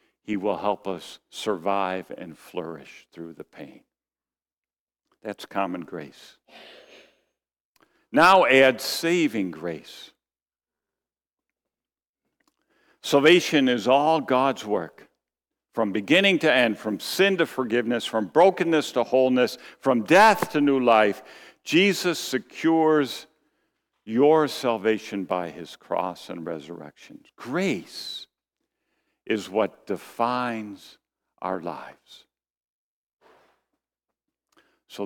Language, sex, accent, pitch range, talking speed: English, male, American, 90-145 Hz, 95 wpm